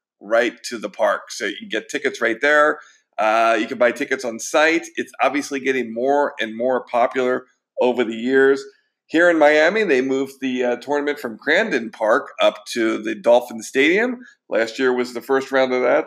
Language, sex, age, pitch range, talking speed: English, male, 40-59, 125-170 Hz, 190 wpm